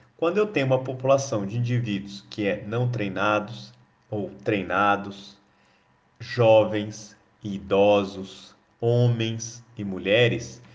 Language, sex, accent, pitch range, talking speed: Portuguese, male, Brazilian, 110-135 Hz, 100 wpm